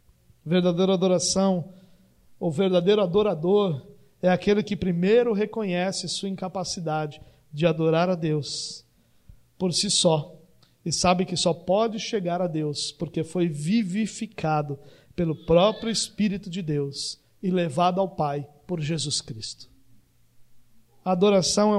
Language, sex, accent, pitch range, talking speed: Portuguese, male, Brazilian, 165-215 Hz, 125 wpm